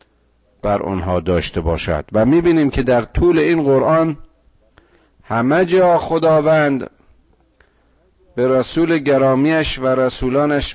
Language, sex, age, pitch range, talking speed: Persian, male, 50-69, 85-140 Hz, 105 wpm